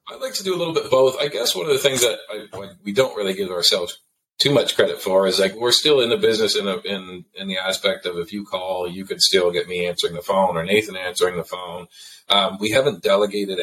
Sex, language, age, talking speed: male, English, 40-59, 265 wpm